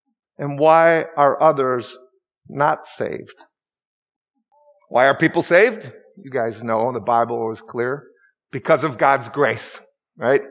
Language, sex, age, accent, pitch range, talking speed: English, male, 50-69, American, 130-195 Hz, 125 wpm